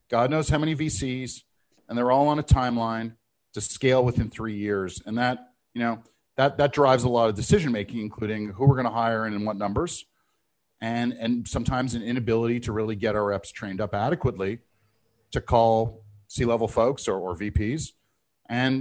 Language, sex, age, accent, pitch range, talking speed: English, male, 40-59, American, 110-125 Hz, 185 wpm